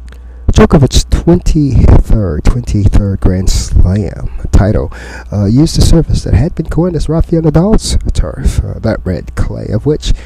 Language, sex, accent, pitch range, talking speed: English, male, American, 85-135 Hz, 140 wpm